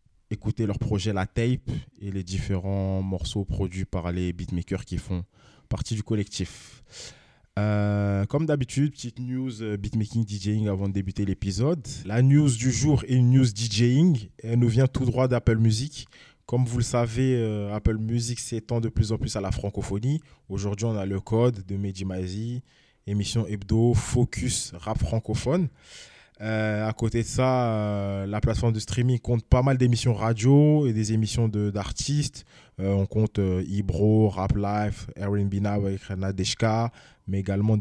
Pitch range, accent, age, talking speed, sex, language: 100-120 Hz, French, 20-39, 165 wpm, male, French